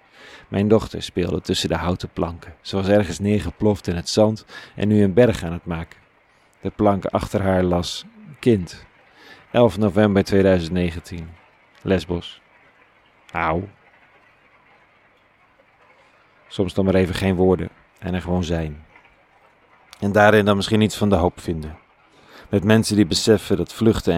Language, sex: Dutch, male